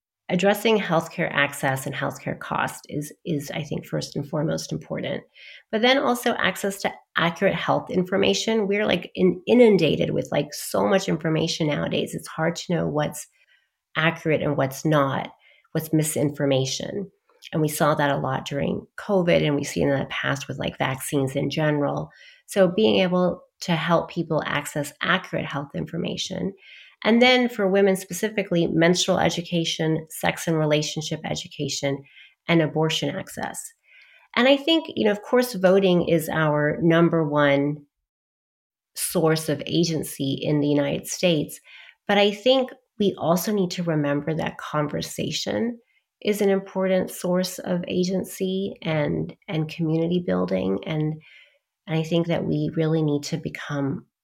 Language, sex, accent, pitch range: English, female, American, 150-195 Hz